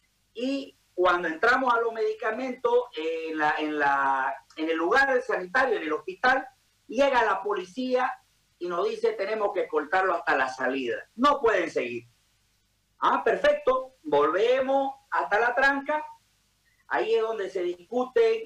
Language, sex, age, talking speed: Spanish, male, 50-69, 145 wpm